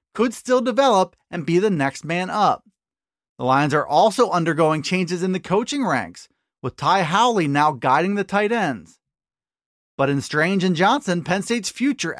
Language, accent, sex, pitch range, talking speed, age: English, American, male, 160-225 Hz, 170 wpm, 30-49